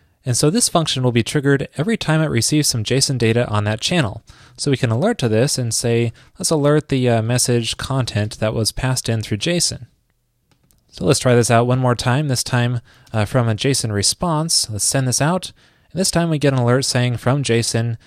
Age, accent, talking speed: 20-39, American, 220 wpm